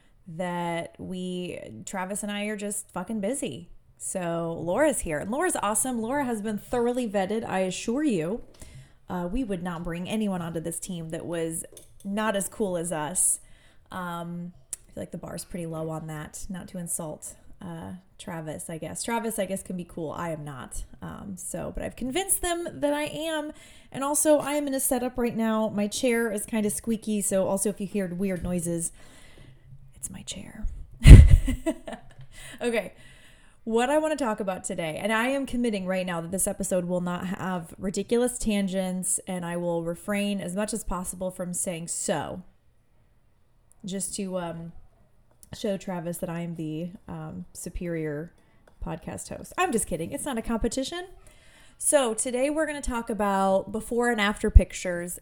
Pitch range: 175-230 Hz